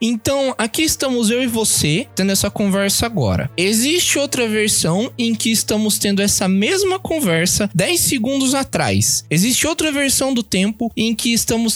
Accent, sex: Brazilian, male